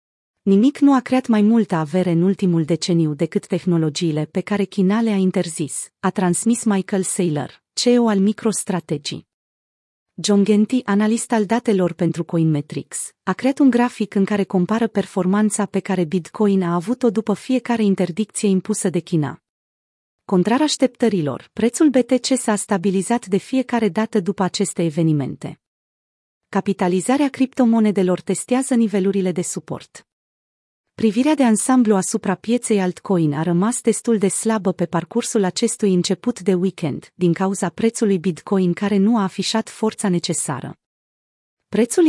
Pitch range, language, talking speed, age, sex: 180-225 Hz, Romanian, 135 wpm, 30-49, female